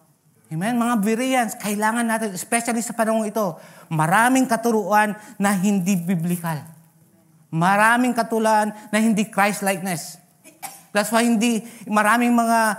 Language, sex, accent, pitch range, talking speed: English, male, Filipino, 150-210 Hz, 115 wpm